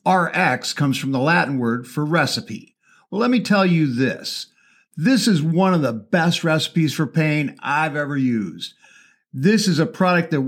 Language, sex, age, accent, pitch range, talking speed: English, male, 50-69, American, 135-190 Hz, 180 wpm